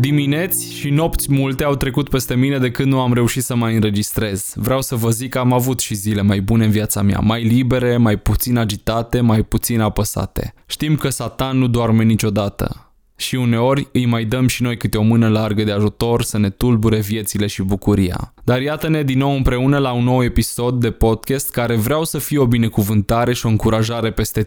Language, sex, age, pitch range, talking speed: Romanian, male, 20-39, 110-135 Hz, 205 wpm